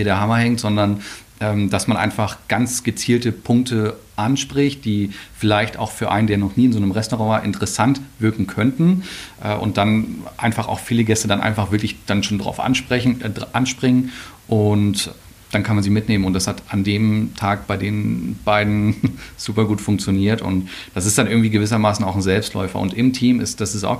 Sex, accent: male, German